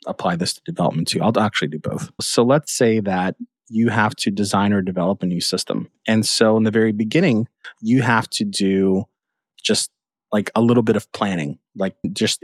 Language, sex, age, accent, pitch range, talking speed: English, male, 30-49, American, 100-120 Hz, 200 wpm